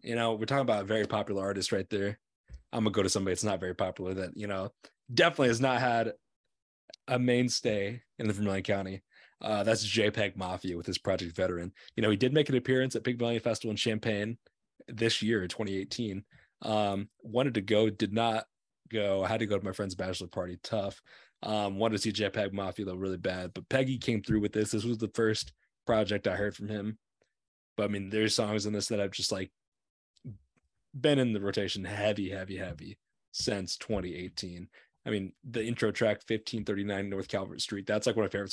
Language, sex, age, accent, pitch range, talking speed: English, male, 20-39, American, 100-115 Hz, 205 wpm